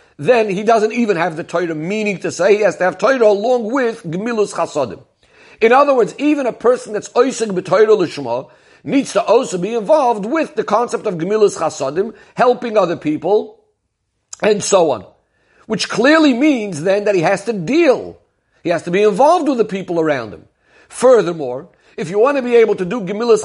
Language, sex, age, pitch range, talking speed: English, male, 50-69, 180-225 Hz, 190 wpm